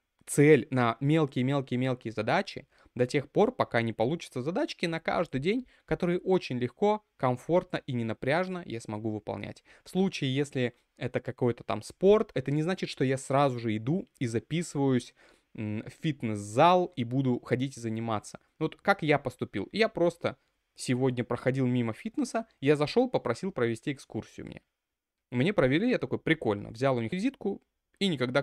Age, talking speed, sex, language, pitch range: 20-39, 160 wpm, male, Russian, 125-165 Hz